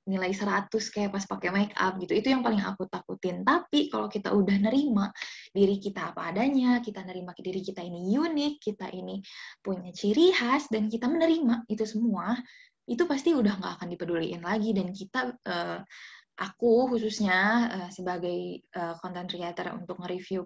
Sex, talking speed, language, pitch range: female, 165 wpm, Indonesian, 185-240 Hz